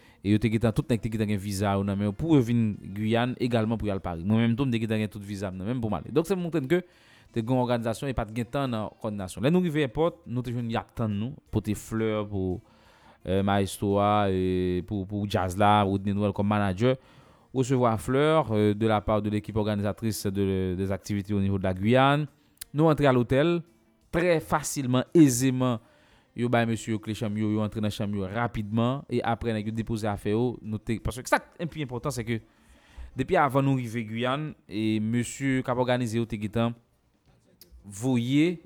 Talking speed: 205 wpm